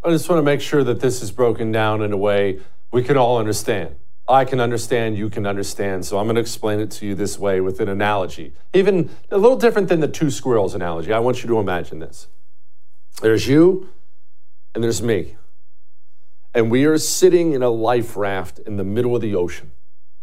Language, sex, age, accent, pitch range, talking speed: English, male, 40-59, American, 115-175 Hz, 210 wpm